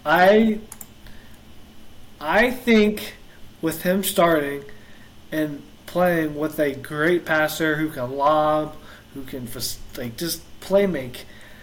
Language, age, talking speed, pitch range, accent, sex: English, 20-39, 115 wpm, 125-170 Hz, American, male